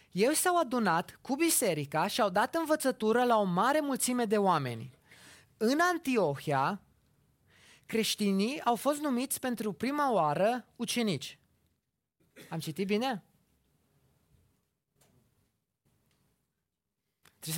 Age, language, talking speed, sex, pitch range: 20-39, Romanian, 100 wpm, male, 165-260 Hz